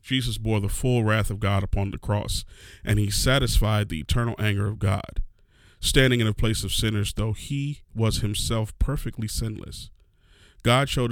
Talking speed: 175 wpm